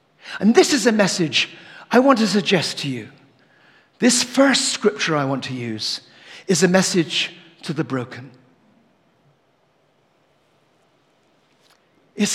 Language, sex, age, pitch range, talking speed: English, male, 60-79, 155-210 Hz, 120 wpm